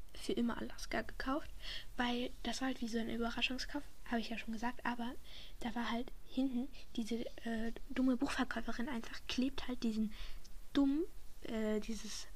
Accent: German